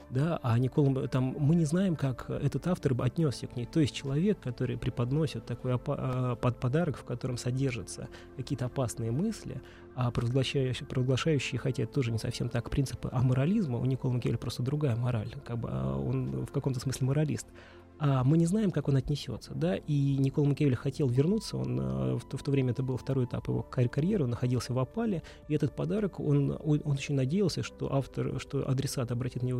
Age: 20-39